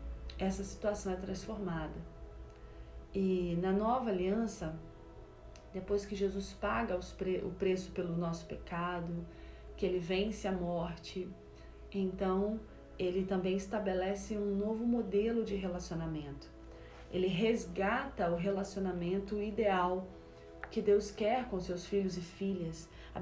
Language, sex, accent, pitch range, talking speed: Portuguese, female, Brazilian, 175-225 Hz, 115 wpm